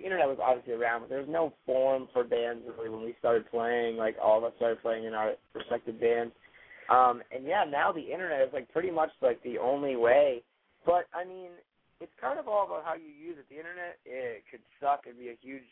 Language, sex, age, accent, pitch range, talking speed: English, male, 20-39, American, 120-135 Hz, 235 wpm